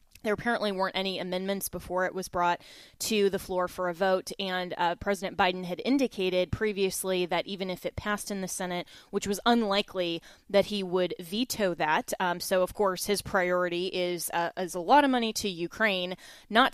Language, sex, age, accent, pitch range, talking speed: English, female, 20-39, American, 180-205 Hz, 195 wpm